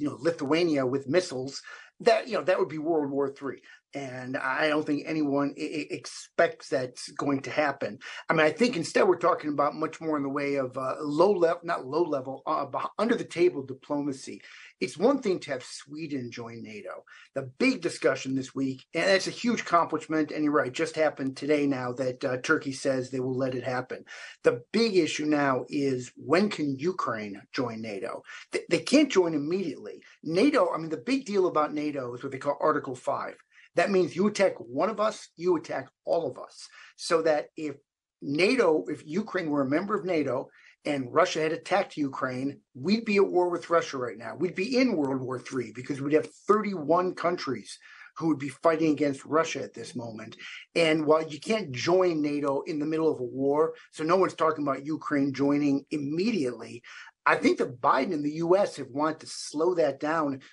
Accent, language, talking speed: American, English, 195 wpm